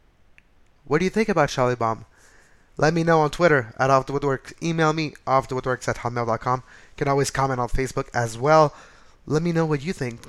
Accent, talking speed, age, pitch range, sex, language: American, 210 wpm, 20-39, 120-140 Hz, male, English